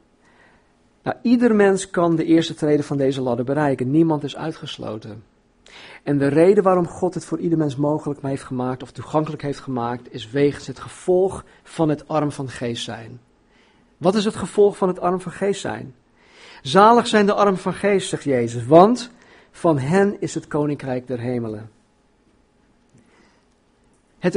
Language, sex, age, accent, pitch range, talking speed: Dutch, male, 50-69, Dutch, 150-205 Hz, 165 wpm